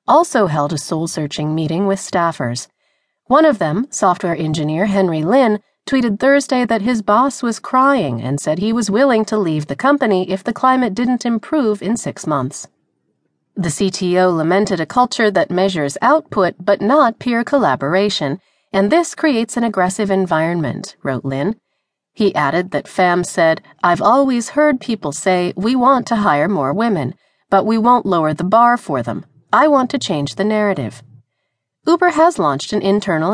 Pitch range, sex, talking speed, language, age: 165-240 Hz, female, 165 wpm, English, 40-59